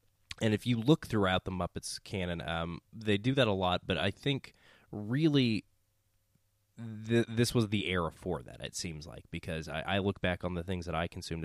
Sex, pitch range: male, 85-110 Hz